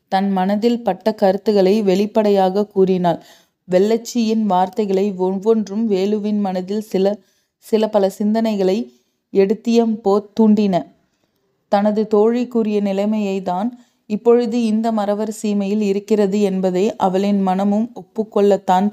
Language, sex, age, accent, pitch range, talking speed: Tamil, female, 30-49, native, 195-225 Hz, 95 wpm